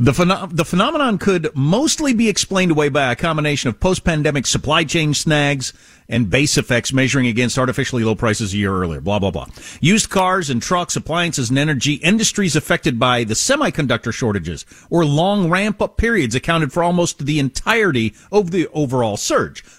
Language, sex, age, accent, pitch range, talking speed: English, male, 40-59, American, 120-180 Hz, 175 wpm